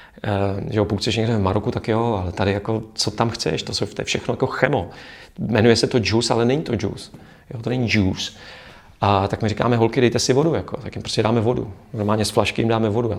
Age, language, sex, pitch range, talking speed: 40-59, Czech, male, 105-115 Hz, 240 wpm